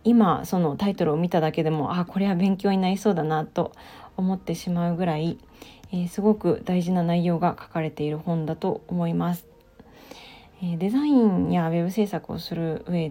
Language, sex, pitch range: Japanese, female, 170-215 Hz